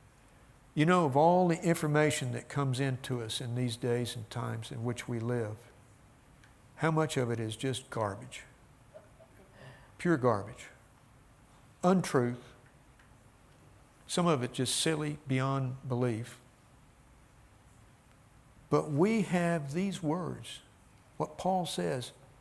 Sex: male